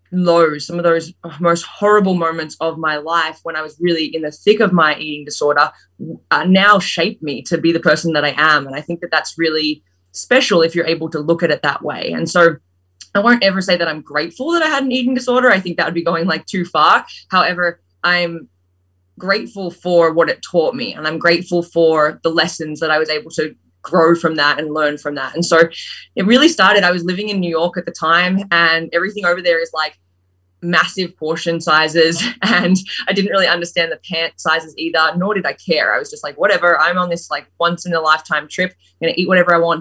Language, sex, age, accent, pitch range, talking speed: English, female, 20-39, Australian, 155-180 Hz, 230 wpm